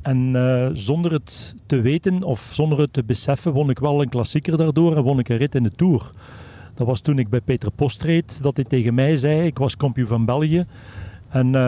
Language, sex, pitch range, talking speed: Dutch, male, 125-165 Hz, 225 wpm